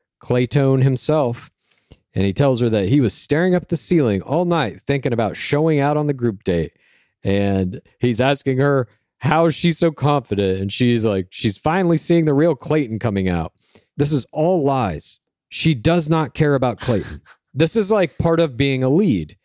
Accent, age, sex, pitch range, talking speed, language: American, 40-59, male, 110-150 Hz, 185 wpm, English